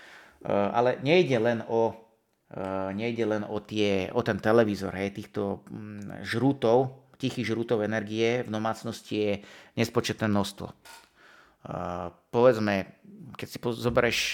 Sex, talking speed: male, 110 wpm